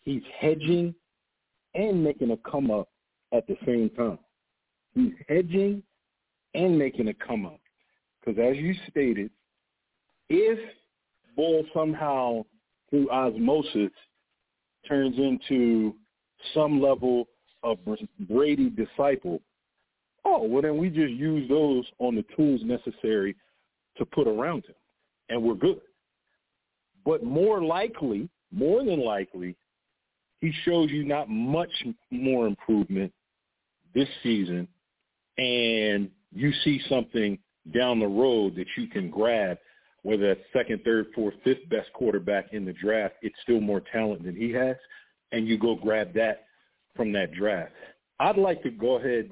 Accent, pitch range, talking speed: American, 110-155 Hz, 130 wpm